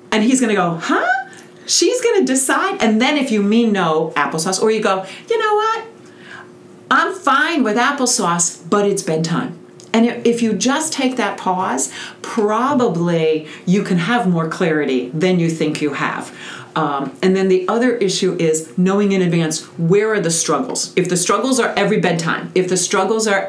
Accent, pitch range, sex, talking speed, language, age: American, 170-230 Hz, female, 185 wpm, English, 40-59